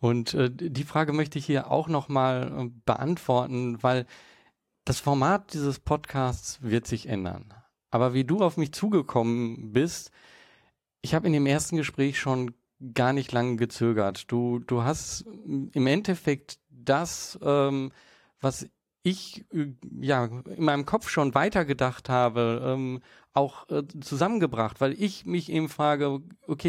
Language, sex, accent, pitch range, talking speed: German, male, German, 130-160 Hz, 140 wpm